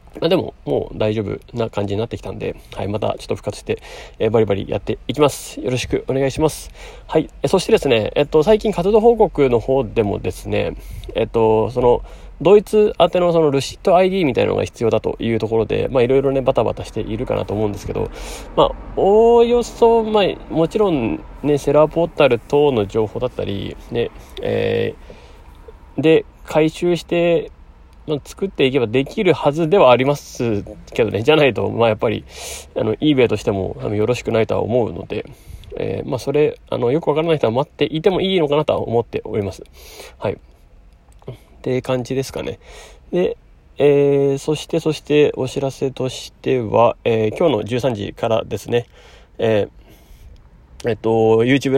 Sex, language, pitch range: male, Japanese, 110-155 Hz